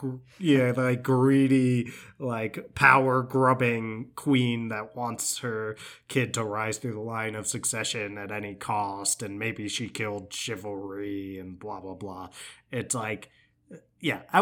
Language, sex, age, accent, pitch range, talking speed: English, male, 20-39, American, 105-130 Hz, 140 wpm